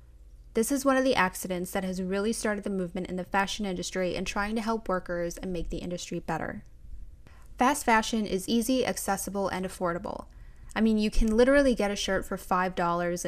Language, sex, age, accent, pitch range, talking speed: English, female, 10-29, American, 180-225 Hz, 195 wpm